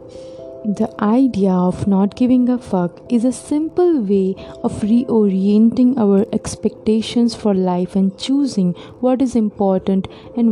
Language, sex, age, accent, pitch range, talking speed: English, female, 20-39, Indian, 190-235 Hz, 130 wpm